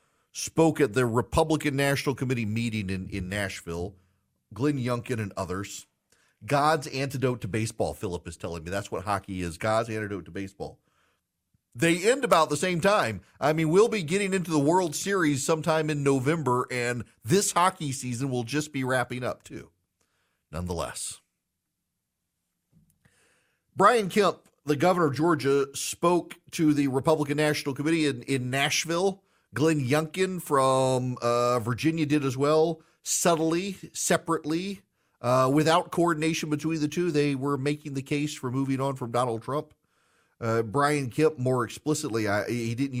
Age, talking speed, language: 40-59, 150 wpm, English